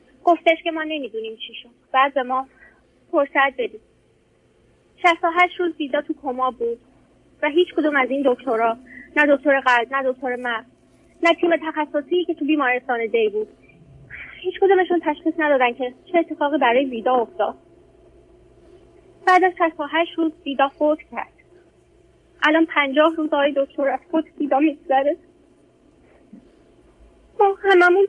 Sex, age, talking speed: female, 30-49, 140 wpm